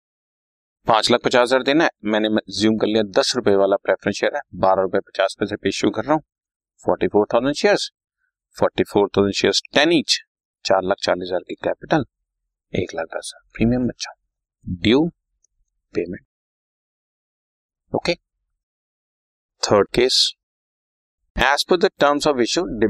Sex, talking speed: male, 70 wpm